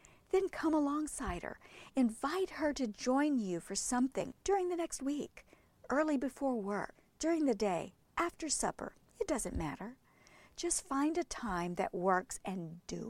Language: English